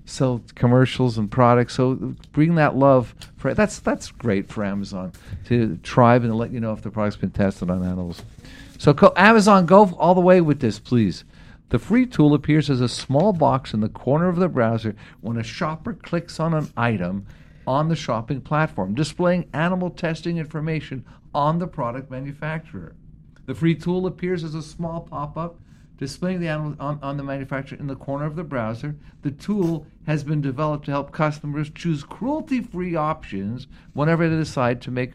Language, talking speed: English, 180 wpm